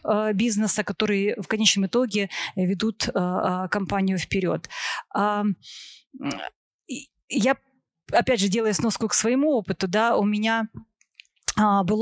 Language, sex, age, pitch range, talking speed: Ukrainian, female, 30-49, 195-225 Hz, 100 wpm